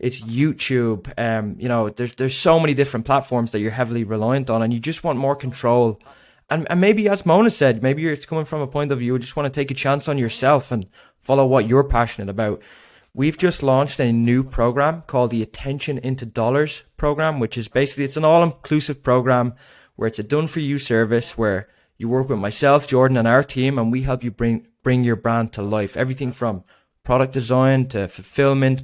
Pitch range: 115-140 Hz